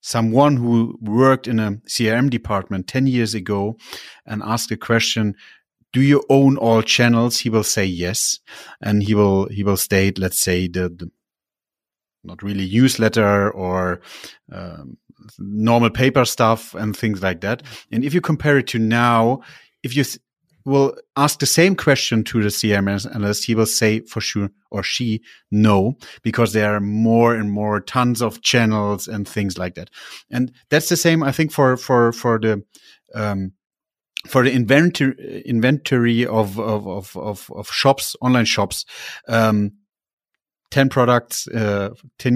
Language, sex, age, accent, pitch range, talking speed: German, male, 30-49, German, 105-125 Hz, 160 wpm